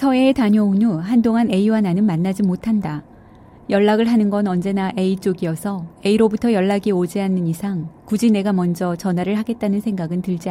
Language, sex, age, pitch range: Korean, female, 30-49, 180-220 Hz